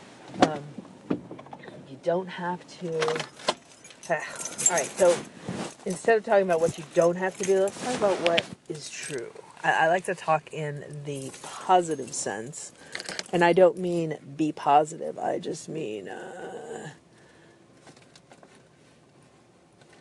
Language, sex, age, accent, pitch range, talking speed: English, female, 40-59, American, 155-215 Hz, 125 wpm